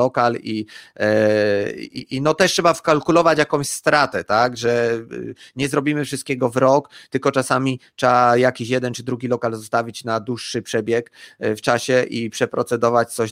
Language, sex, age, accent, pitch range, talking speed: Polish, male, 30-49, native, 120-150 Hz, 155 wpm